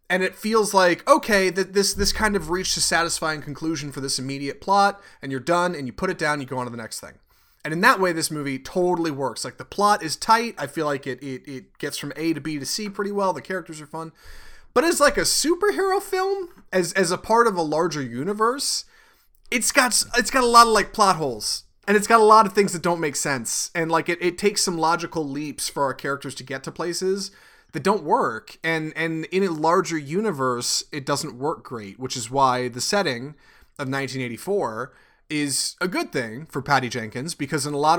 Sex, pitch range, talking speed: male, 135-190 Hz, 230 wpm